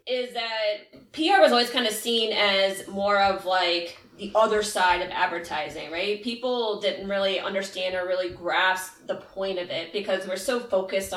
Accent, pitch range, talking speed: American, 190-225 Hz, 175 wpm